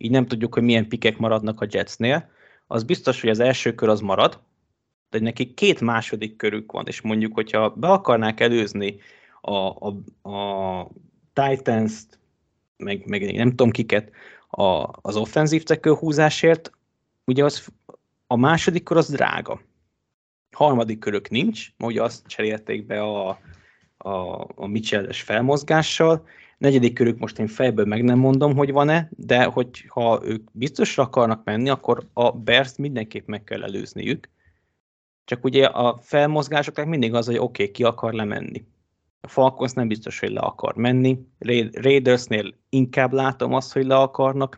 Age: 20-39